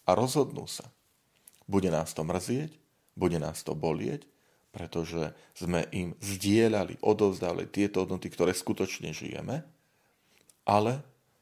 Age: 40-59